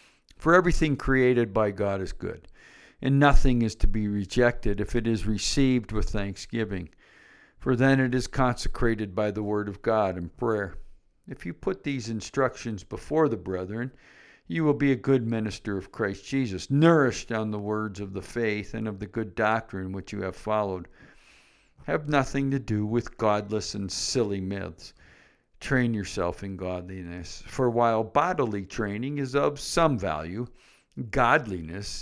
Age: 50-69